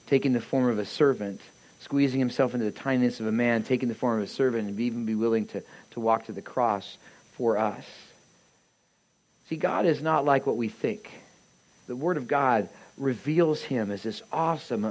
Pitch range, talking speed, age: 130-175 Hz, 195 wpm, 40-59